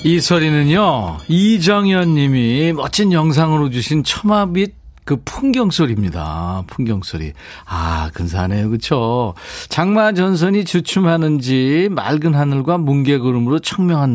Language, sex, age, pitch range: Korean, male, 40-59, 115-175 Hz